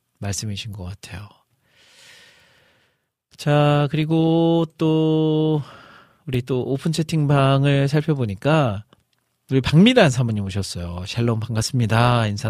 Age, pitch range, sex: 40-59, 100-135 Hz, male